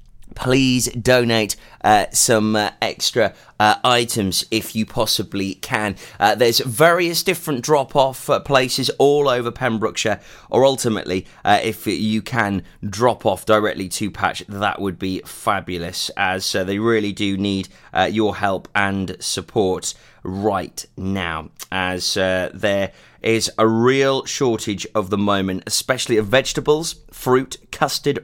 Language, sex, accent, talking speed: English, male, British, 135 wpm